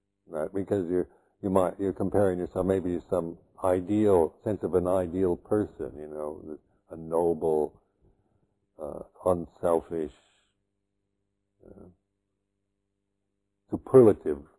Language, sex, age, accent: English, male, 60-79, American